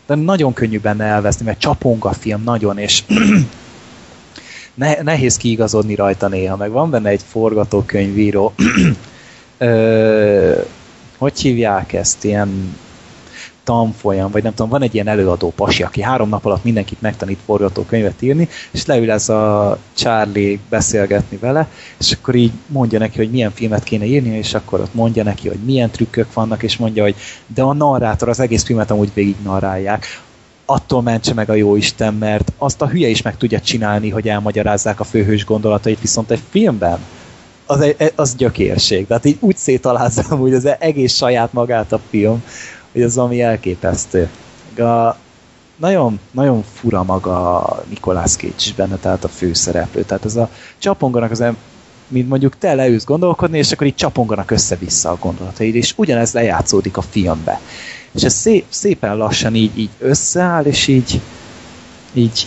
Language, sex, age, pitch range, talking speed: Hungarian, male, 20-39, 105-125 Hz, 155 wpm